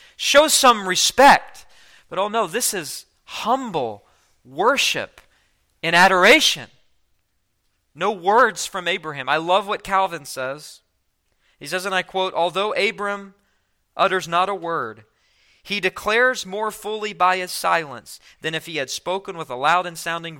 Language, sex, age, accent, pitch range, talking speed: English, male, 40-59, American, 160-235 Hz, 145 wpm